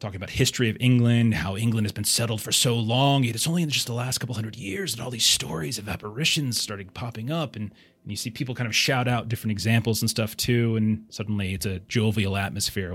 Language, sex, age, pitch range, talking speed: English, male, 30-49, 105-135 Hz, 240 wpm